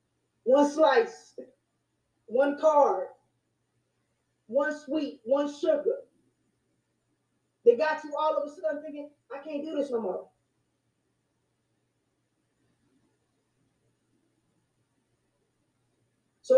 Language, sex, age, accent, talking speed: English, female, 20-39, American, 85 wpm